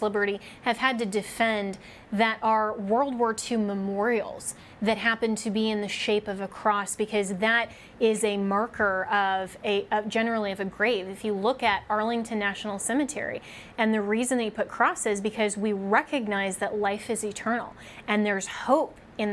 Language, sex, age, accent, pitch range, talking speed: English, female, 20-39, American, 210-230 Hz, 175 wpm